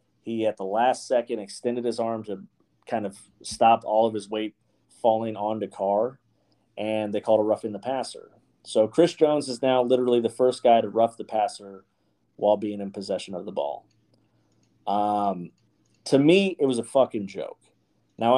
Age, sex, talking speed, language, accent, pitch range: 30-49, male, 180 wpm, English, American, 105-125 Hz